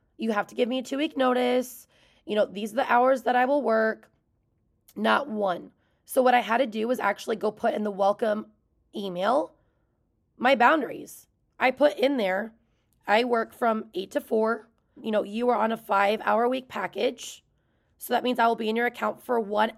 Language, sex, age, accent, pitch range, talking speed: English, female, 20-39, American, 200-245 Hz, 205 wpm